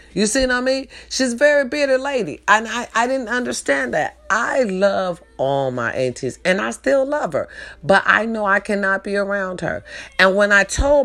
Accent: American